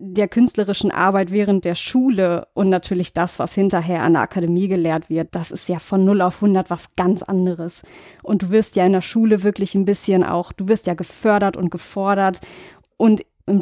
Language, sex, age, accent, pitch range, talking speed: German, female, 20-39, German, 185-210 Hz, 200 wpm